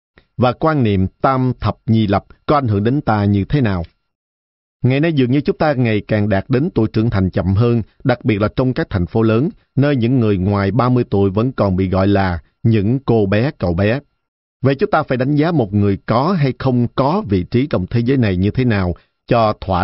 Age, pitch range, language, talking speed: 50-69, 100-135 Hz, Vietnamese, 235 wpm